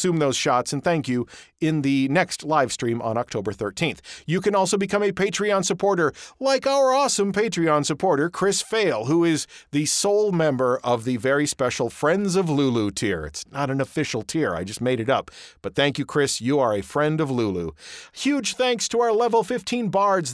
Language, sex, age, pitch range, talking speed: English, male, 50-69, 130-200 Hz, 200 wpm